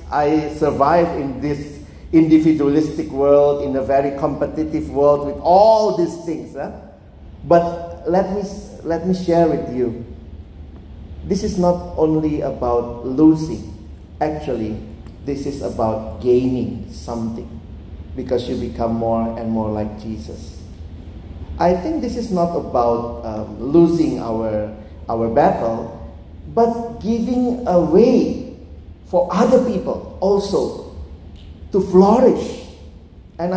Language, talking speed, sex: Indonesian, 115 wpm, male